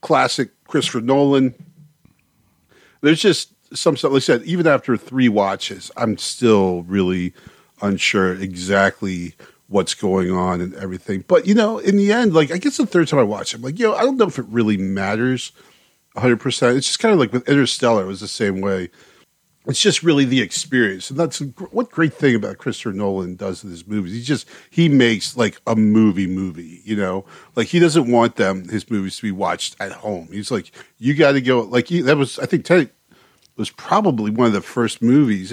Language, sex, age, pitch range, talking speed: English, male, 40-59, 100-145 Hz, 205 wpm